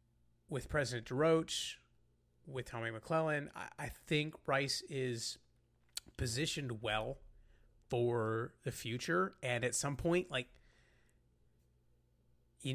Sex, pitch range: male, 110-130 Hz